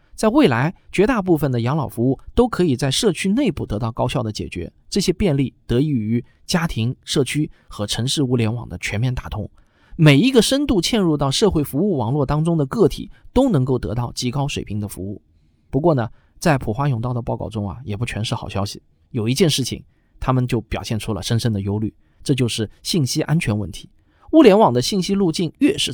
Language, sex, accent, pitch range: Chinese, male, native, 115-165 Hz